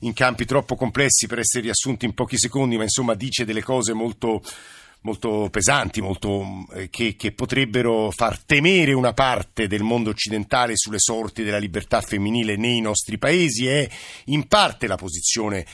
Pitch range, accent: 105-130 Hz, native